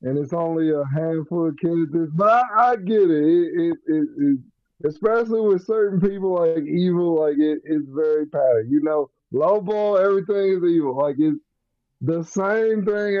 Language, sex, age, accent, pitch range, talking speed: English, male, 20-39, American, 150-205 Hz, 175 wpm